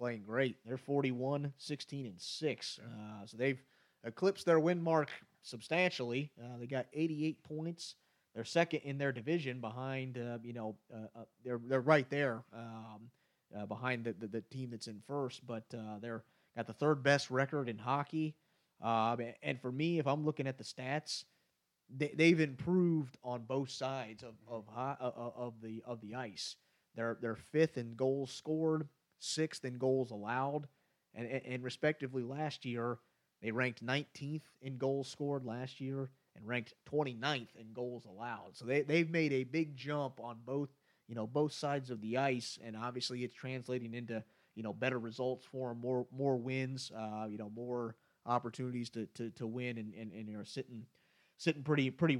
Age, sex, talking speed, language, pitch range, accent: 30-49, male, 180 wpm, English, 115-140 Hz, American